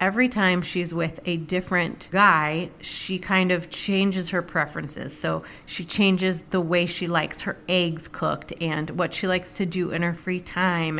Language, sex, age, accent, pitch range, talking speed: English, female, 30-49, American, 170-200 Hz, 180 wpm